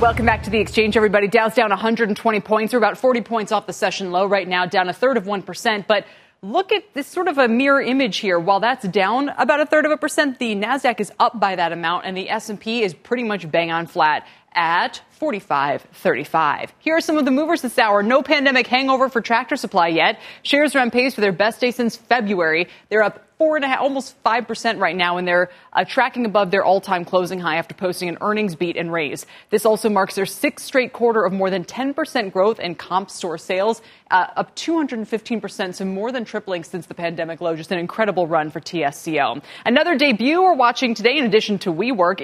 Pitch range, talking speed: 180-250 Hz, 220 wpm